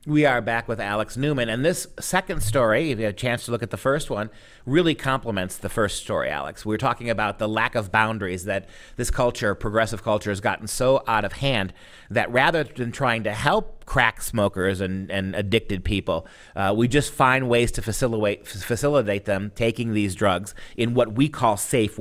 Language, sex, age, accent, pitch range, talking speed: English, male, 40-59, American, 110-155 Hz, 205 wpm